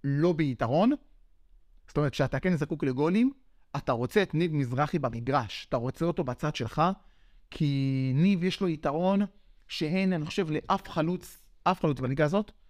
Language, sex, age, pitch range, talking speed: Hebrew, male, 30-49, 135-190 Hz, 155 wpm